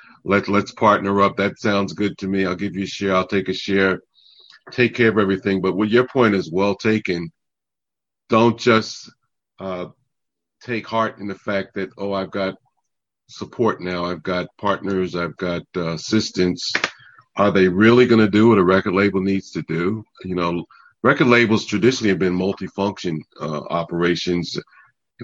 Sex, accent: male, American